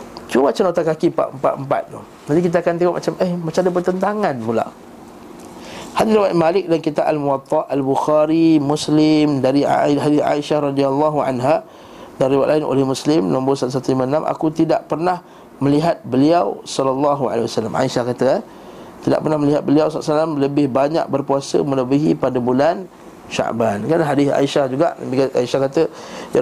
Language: Malay